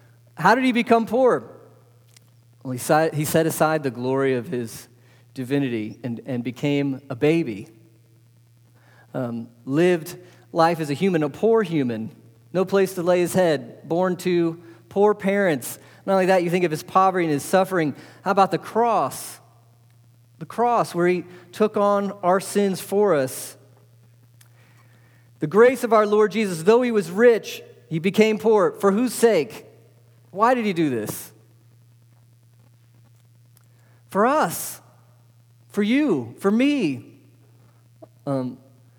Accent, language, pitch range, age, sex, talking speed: American, English, 120-190 Hz, 40-59, male, 140 wpm